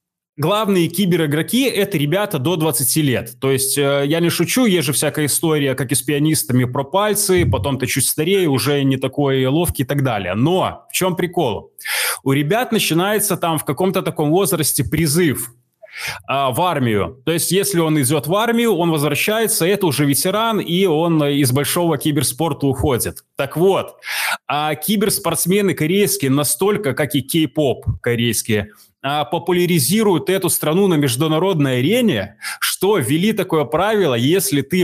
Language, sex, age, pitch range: Russian, male, 20-39, 140-180 Hz